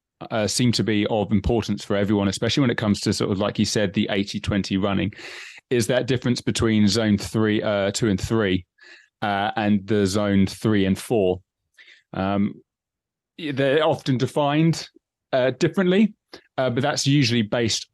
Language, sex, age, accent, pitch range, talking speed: English, male, 20-39, British, 100-120 Hz, 165 wpm